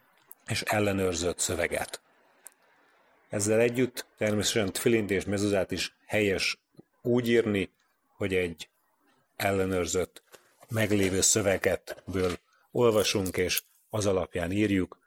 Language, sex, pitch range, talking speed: Hungarian, male, 95-110 Hz, 90 wpm